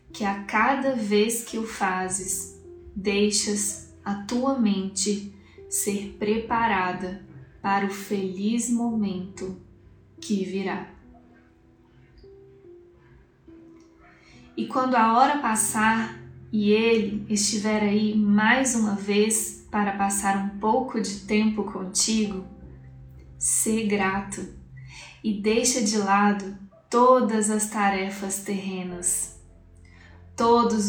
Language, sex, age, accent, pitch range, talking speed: Portuguese, female, 10-29, Brazilian, 190-220 Hz, 95 wpm